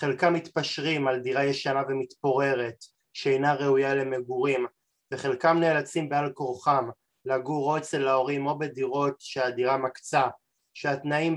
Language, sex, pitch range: Hebrew, male, 130-155 Hz